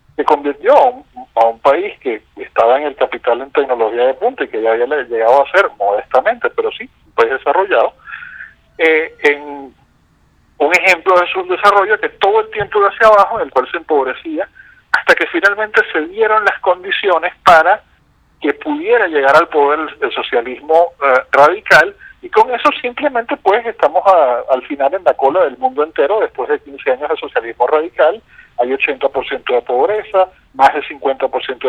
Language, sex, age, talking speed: Spanish, male, 50-69, 180 wpm